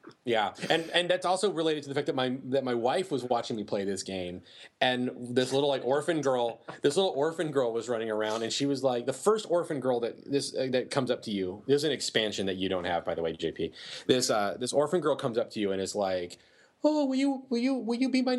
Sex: male